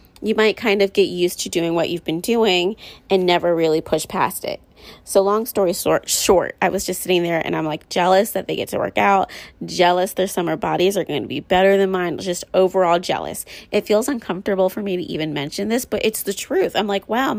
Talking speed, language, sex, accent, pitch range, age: 230 wpm, English, female, American, 175-205 Hz, 20-39